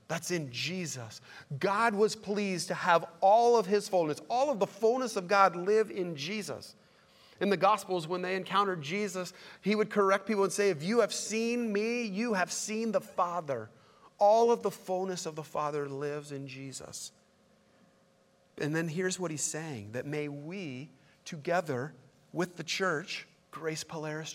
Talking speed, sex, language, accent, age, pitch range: 170 wpm, male, English, American, 40-59, 160-205 Hz